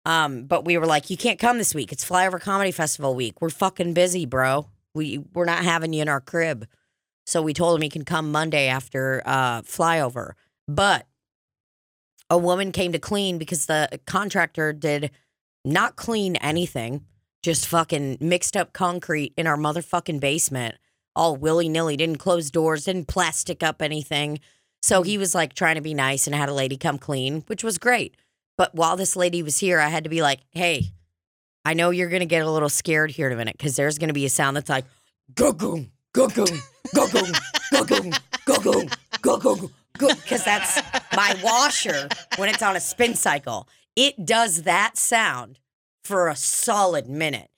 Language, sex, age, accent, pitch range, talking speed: English, female, 20-39, American, 145-195 Hz, 175 wpm